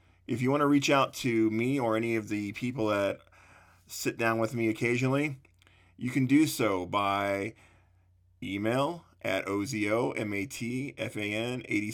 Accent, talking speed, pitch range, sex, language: American, 135 wpm, 95-115 Hz, male, English